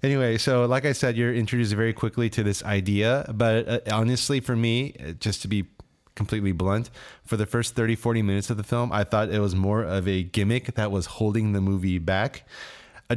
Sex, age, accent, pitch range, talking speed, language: male, 30-49, American, 100-120 Hz, 205 wpm, English